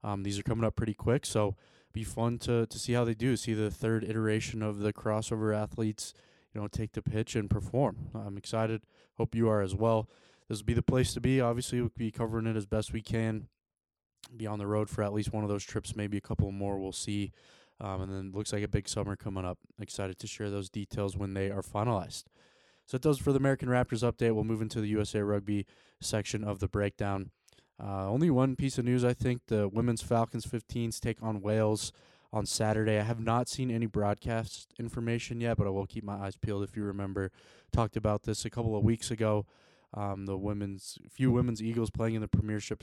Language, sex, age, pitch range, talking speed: English, male, 20-39, 100-115 Hz, 225 wpm